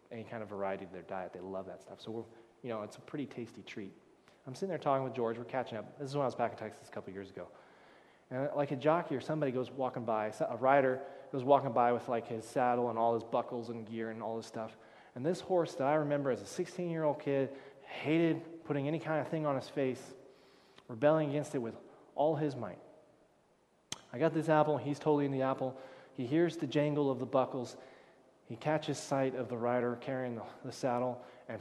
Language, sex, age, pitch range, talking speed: English, male, 20-39, 115-145 Hz, 235 wpm